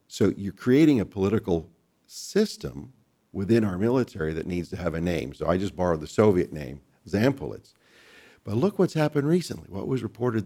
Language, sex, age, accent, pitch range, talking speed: English, male, 50-69, American, 90-115 Hz, 180 wpm